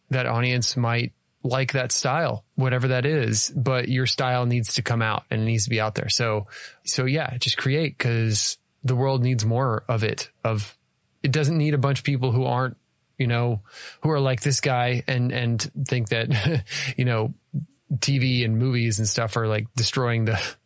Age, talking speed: 20-39, 190 wpm